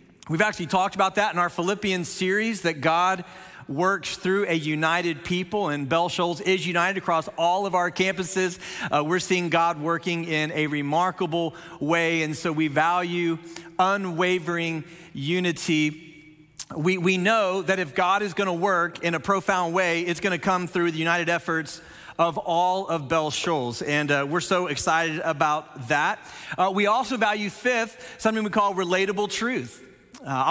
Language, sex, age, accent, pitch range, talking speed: English, male, 40-59, American, 165-190 Hz, 165 wpm